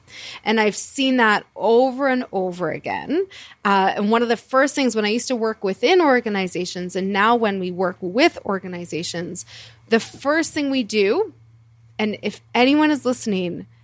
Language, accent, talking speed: English, American, 170 wpm